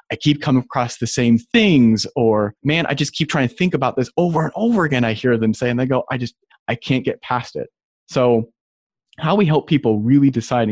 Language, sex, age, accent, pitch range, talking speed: English, male, 30-49, American, 110-140 Hz, 235 wpm